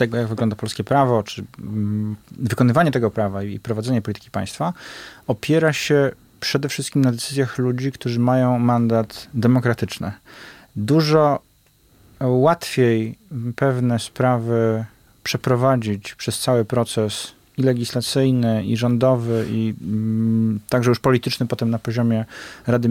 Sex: male